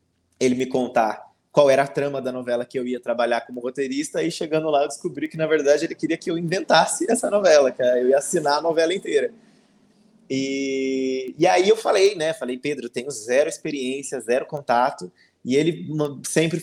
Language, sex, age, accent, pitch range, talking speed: Portuguese, male, 20-39, Brazilian, 135-185 Hz, 195 wpm